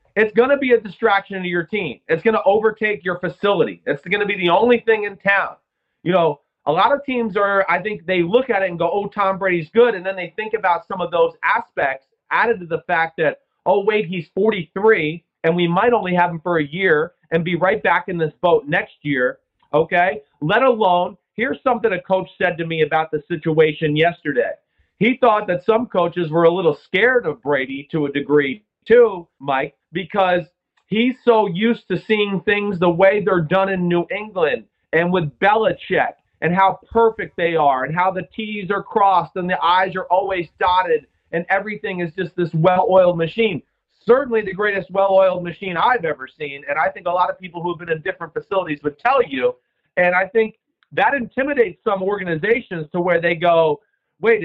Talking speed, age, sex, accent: 205 wpm, 40-59, male, American